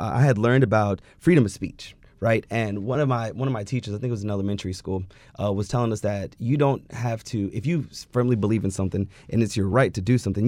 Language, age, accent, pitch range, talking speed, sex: English, 30-49, American, 100-125 Hz, 260 wpm, male